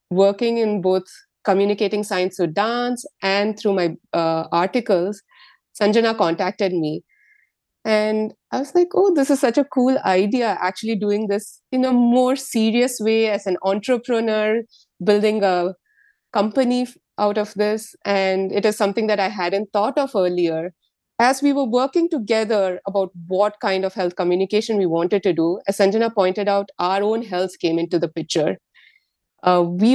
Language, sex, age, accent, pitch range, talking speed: English, female, 30-49, Indian, 190-230 Hz, 160 wpm